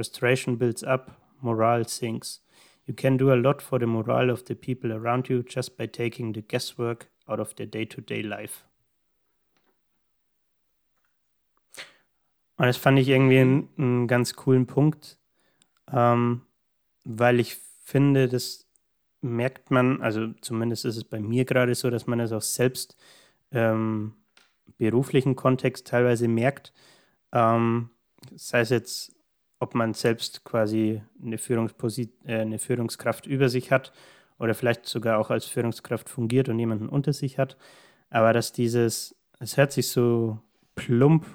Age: 30-49